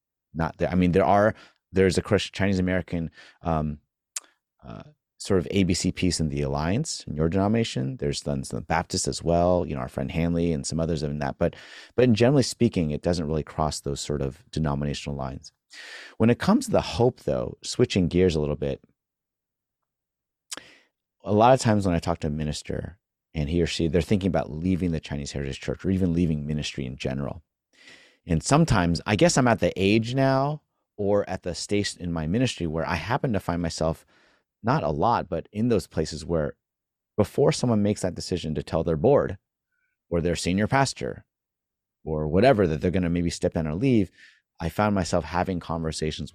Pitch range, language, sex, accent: 75-95 Hz, English, male, American